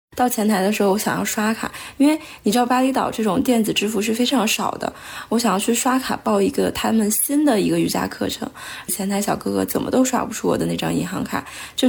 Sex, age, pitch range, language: female, 20-39, 200-255 Hz, Chinese